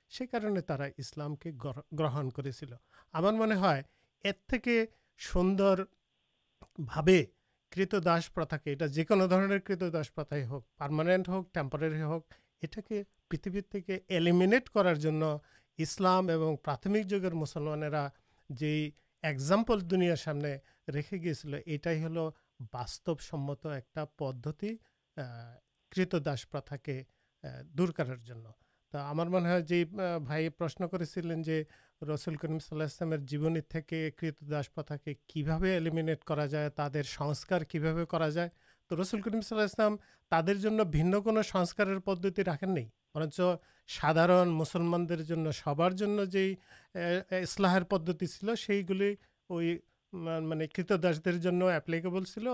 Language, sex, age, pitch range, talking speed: Urdu, male, 50-69, 150-185 Hz, 85 wpm